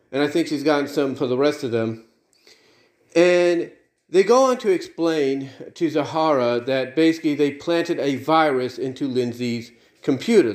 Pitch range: 135-170 Hz